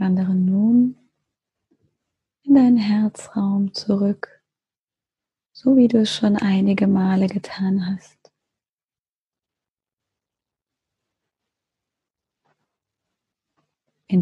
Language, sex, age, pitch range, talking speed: German, female, 30-49, 185-215 Hz, 70 wpm